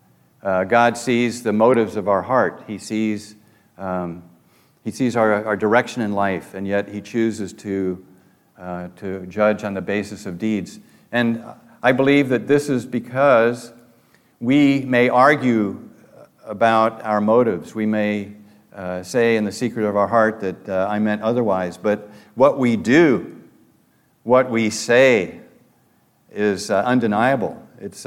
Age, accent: 50-69, American